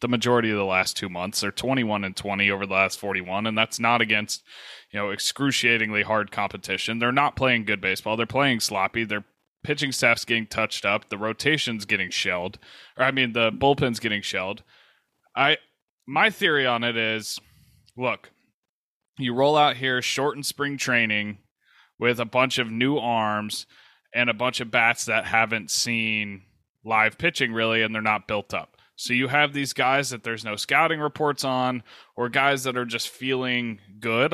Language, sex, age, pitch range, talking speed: English, male, 20-39, 110-135 Hz, 180 wpm